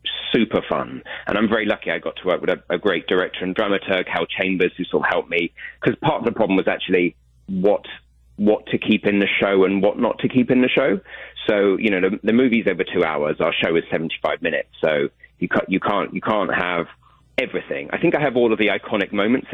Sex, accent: male, British